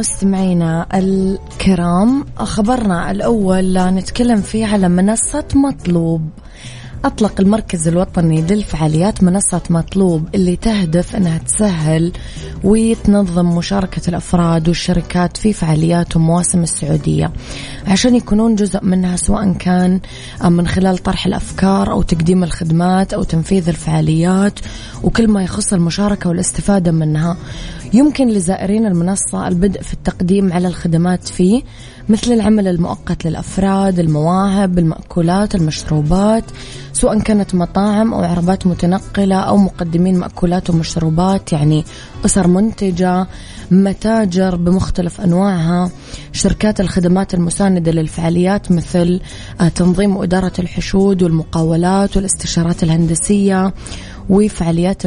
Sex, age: female, 20-39